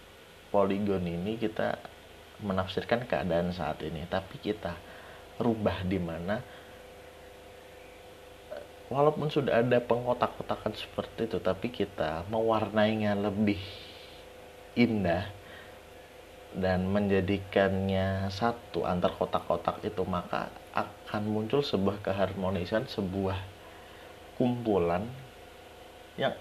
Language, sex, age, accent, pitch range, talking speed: Indonesian, male, 30-49, native, 85-105 Hz, 85 wpm